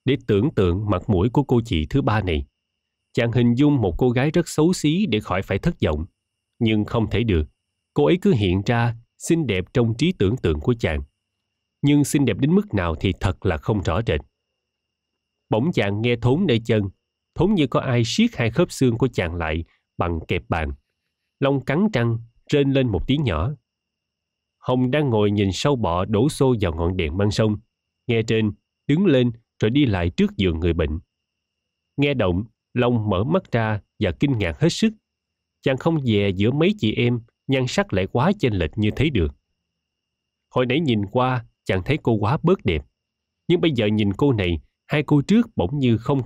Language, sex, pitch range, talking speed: Vietnamese, male, 95-135 Hz, 200 wpm